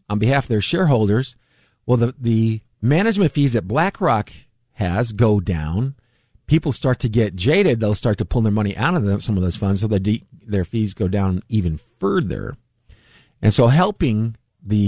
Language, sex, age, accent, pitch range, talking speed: English, male, 50-69, American, 100-130 Hz, 180 wpm